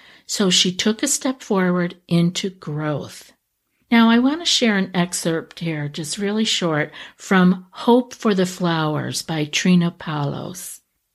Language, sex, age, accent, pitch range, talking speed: English, female, 50-69, American, 155-220 Hz, 145 wpm